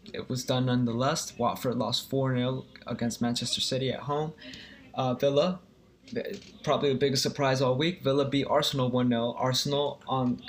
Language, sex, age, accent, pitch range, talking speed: English, male, 20-39, American, 115-135 Hz, 155 wpm